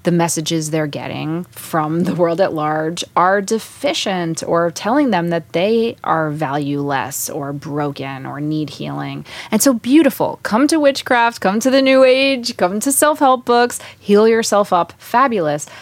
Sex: female